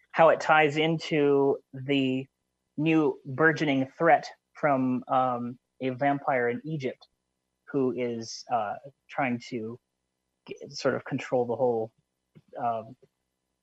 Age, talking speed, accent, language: 30-49, 115 wpm, American, English